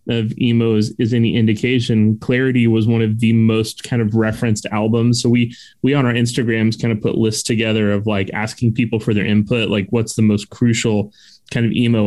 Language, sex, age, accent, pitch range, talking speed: English, male, 20-39, American, 110-130 Hz, 210 wpm